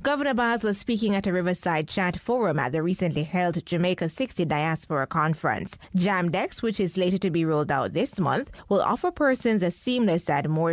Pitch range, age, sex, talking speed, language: 160-215 Hz, 20-39, female, 190 wpm, English